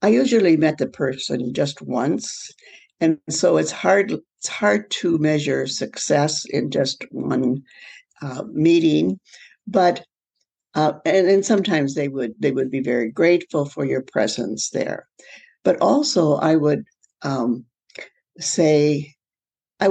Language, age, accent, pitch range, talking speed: English, 60-79, American, 130-160 Hz, 135 wpm